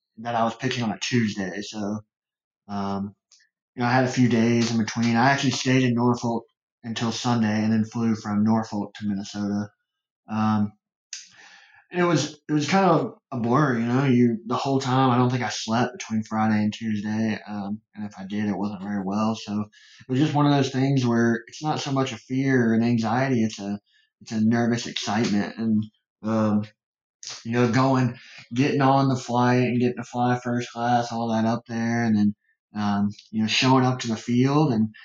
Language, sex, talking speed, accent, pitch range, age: English, male, 200 wpm, American, 105-125 Hz, 20-39